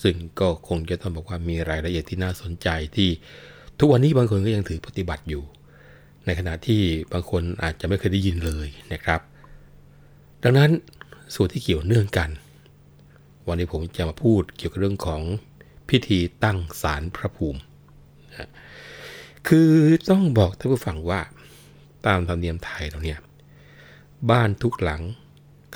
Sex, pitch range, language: male, 85-120 Hz, Thai